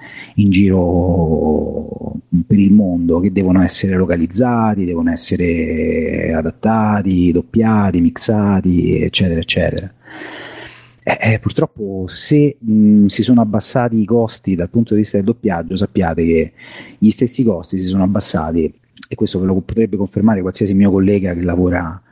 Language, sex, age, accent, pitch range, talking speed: Italian, male, 30-49, native, 95-105 Hz, 140 wpm